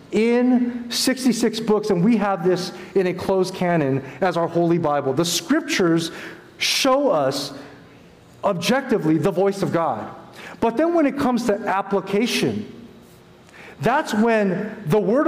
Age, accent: 40-59, American